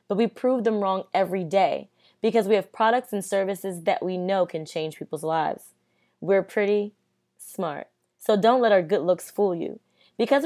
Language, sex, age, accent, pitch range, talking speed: English, female, 20-39, American, 180-220 Hz, 185 wpm